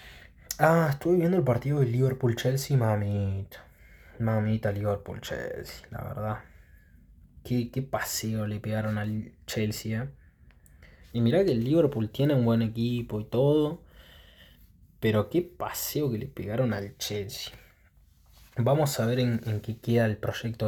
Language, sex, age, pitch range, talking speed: Spanish, male, 20-39, 105-120 Hz, 140 wpm